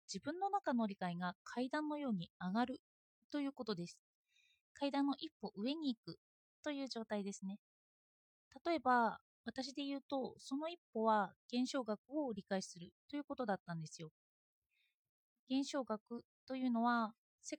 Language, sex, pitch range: Japanese, female, 205-280 Hz